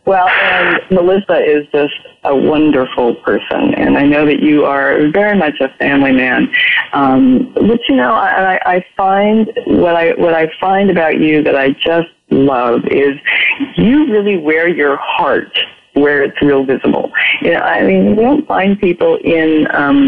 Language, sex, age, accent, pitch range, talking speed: English, female, 40-59, American, 155-225 Hz, 170 wpm